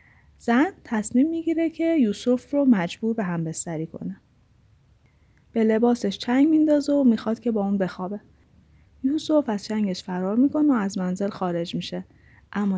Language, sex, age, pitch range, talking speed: Persian, female, 10-29, 190-255 Hz, 150 wpm